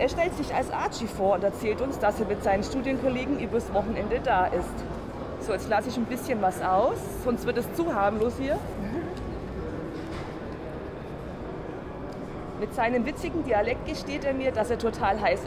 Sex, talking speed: female, 165 wpm